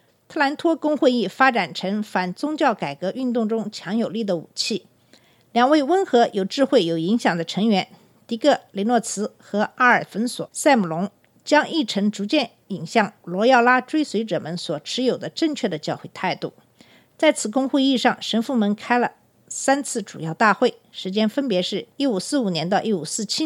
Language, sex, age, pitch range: Chinese, female, 50-69, 200-275 Hz